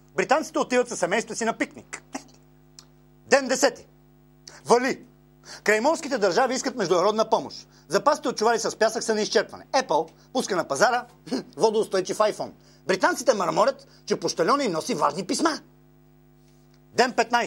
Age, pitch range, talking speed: 40-59, 200-260 Hz, 125 wpm